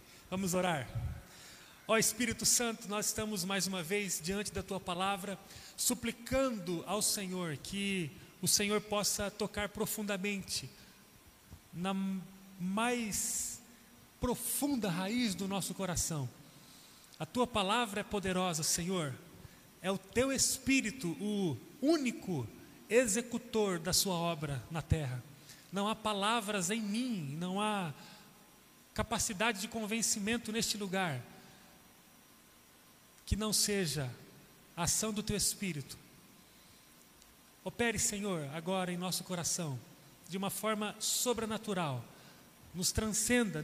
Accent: Brazilian